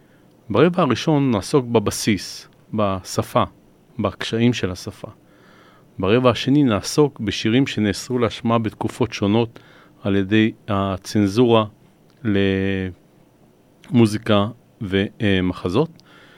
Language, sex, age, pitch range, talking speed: Hebrew, male, 40-59, 100-130 Hz, 75 wpm